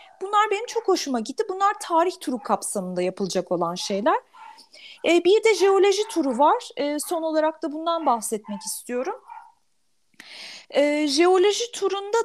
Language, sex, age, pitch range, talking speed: Turkish, female, 30-49, 250-365 Hz, 125 wpm